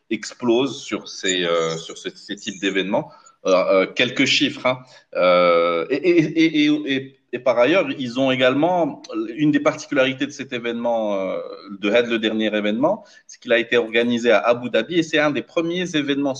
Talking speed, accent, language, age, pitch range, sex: 185 wpm, French, French, 30-49, 105-160 Hz, male